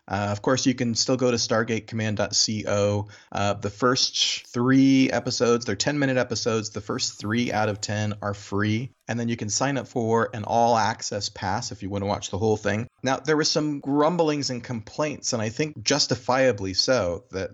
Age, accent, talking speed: 30-49, American, 190 wpm